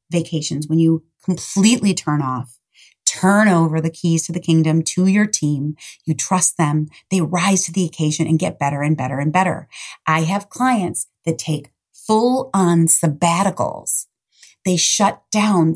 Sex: female